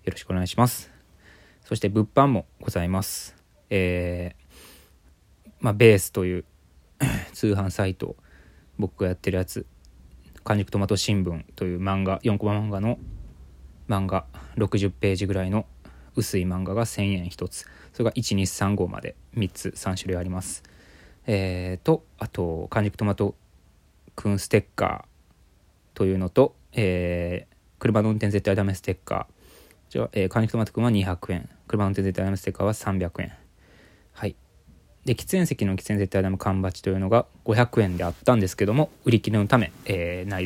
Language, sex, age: Japanese, male, 20-39